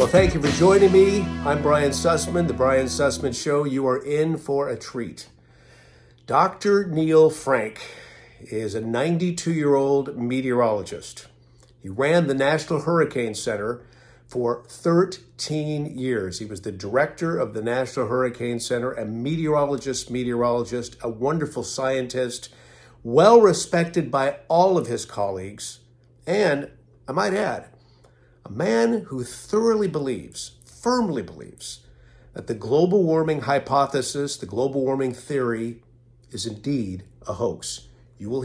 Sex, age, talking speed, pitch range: male, 50-69, 130 wpm, 120-155 Hz